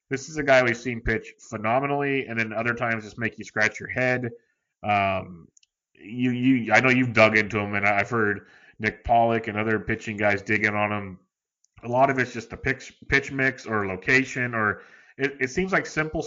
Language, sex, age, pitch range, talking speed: English, male, 30-49, 105-120 Hz, 205 wpm